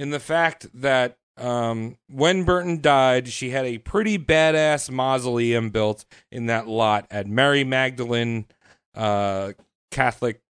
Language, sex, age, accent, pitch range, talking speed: English, male, 40-59, American, 120-150 Hz, 130 wpm